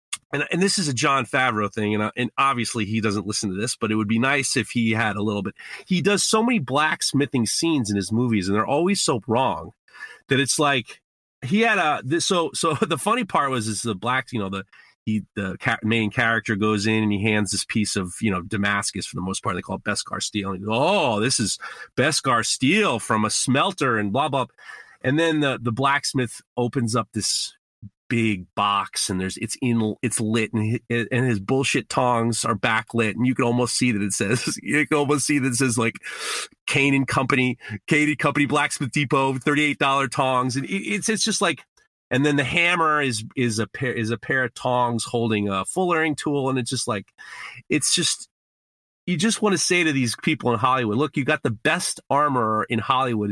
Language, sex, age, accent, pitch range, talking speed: English, male, 30-49, American, 110-145 Hz, 220 wpm